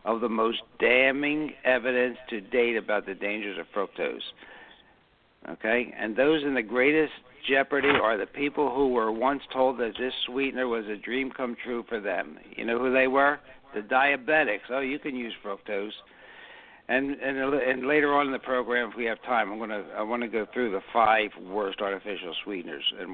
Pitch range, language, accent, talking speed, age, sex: 115-140 Hz, English, American, 190 wpm, 60-79, male